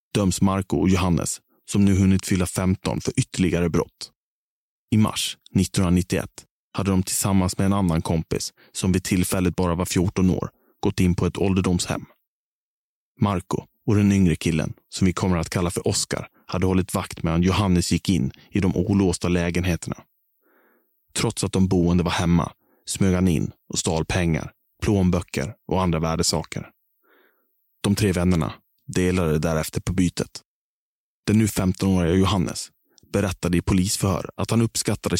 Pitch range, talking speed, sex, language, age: 85-100 Hz, 155 wpm, male, Swedish, 30-49